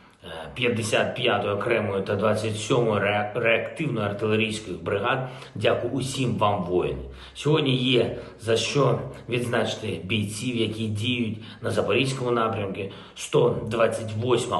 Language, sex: Ukrainian, male